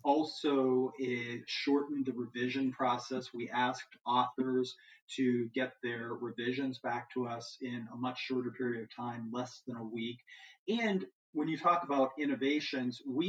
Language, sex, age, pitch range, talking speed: English, male, 40-59, 125-155 Hz, 155 wpm